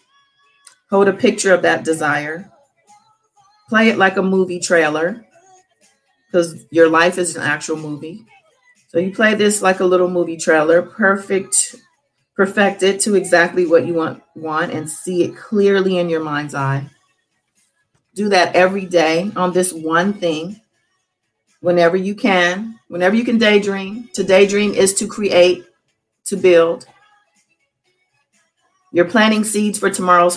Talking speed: 140 wpm